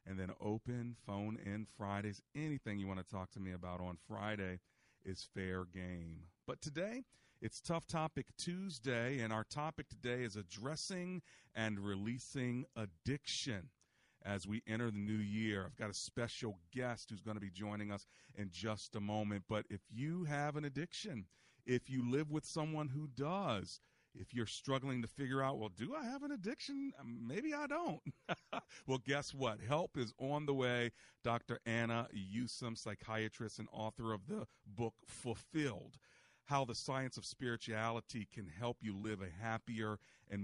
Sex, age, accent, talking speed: male, 40-59, American, 170 wpm